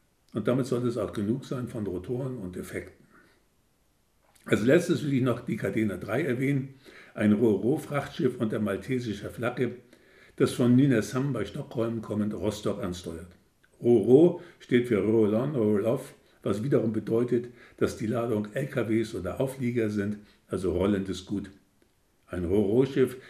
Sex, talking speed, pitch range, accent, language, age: male, 140 wpm, 105-130 Hz, German, German, 50-69